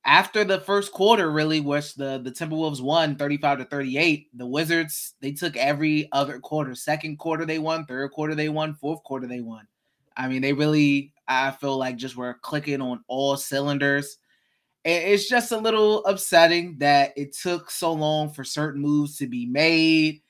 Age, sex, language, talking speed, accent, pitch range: 20-39, male, English, 180 wpm, American, 140-165 Hz